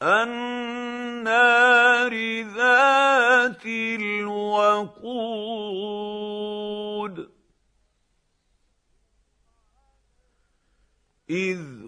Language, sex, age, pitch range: Arabic, male, 50-69, 210-250 Hz